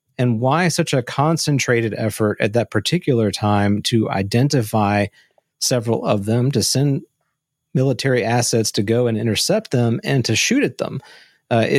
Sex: male